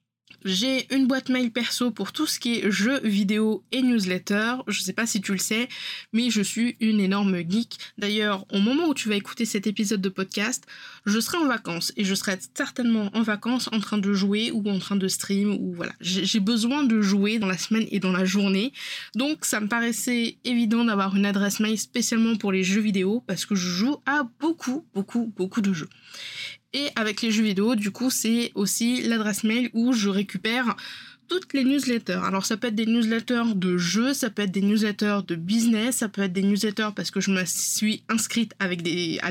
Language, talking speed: French, 215 wpm